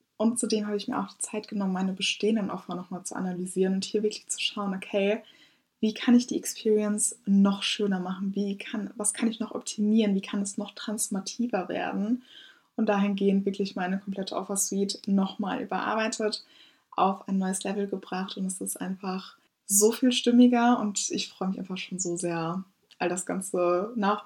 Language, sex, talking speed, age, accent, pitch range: German, female, 180 wpm, 20-39, German, 195-230 Hz